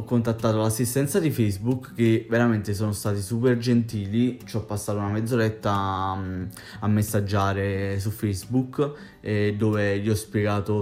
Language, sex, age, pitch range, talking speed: Italian, male, 20-39, 105-125 Hz, 140 wpm